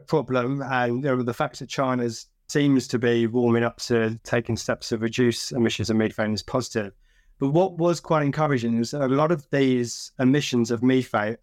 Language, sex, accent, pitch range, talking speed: English, male, British, 115-140 Hz, 195 wpm